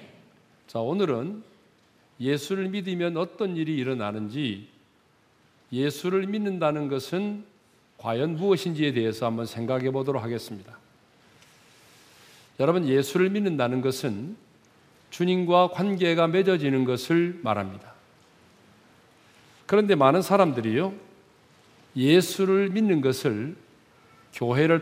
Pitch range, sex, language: 130-185 Hz, male, Korean